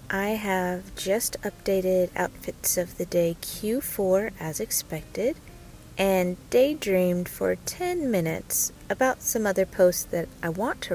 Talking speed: 130 wpm